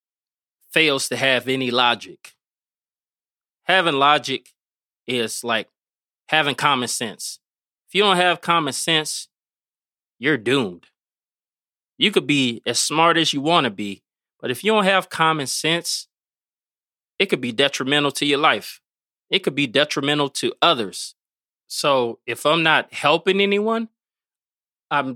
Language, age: English, 20-39